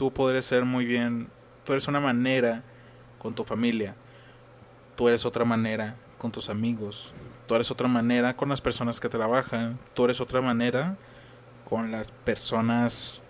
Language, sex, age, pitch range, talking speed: Spanish, male, 20-39, 110-130 Hz, 160 wpm